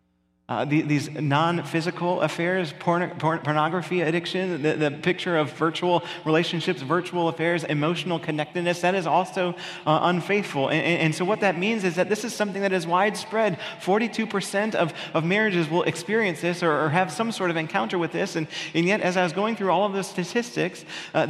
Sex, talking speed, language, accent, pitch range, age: male, 180 wpm, English, American, 155-185 Hz, 30-49